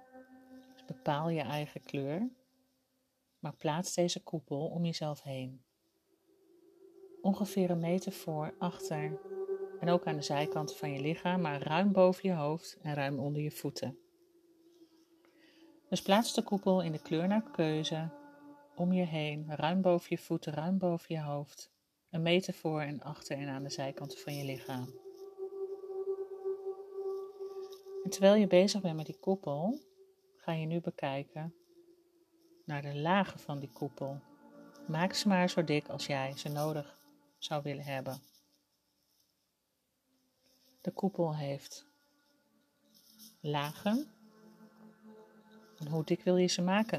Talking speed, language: 135 wpm, Dutch